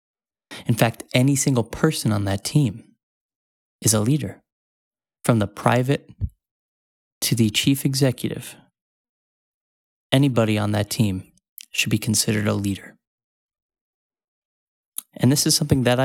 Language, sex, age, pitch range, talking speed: English, male, 20-39, 110-130 Hz, 120 wpm